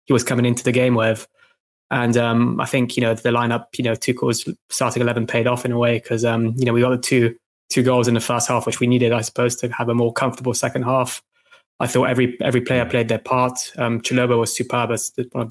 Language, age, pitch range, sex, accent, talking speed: English, 20-39, 115-125 Hz, male, British, 260 wpm